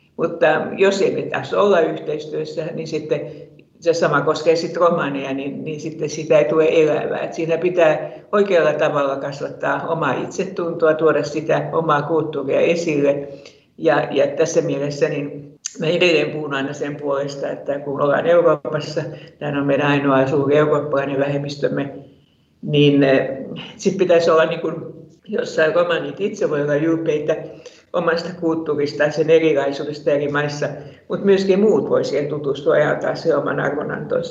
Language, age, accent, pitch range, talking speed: Finnish, 60-79, native, 145-190 Hz, 140 wpm